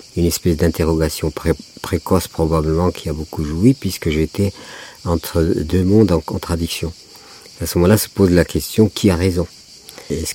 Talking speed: 160 wpm